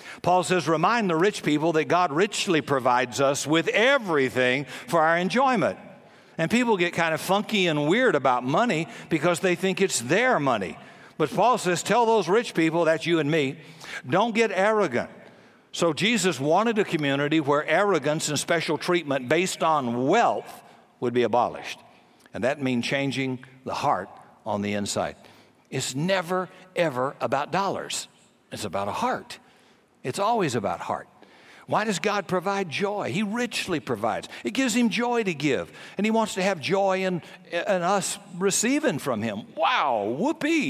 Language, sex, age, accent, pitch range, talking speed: English, male, 60-79, American, 145-205 Hz, 165 wpm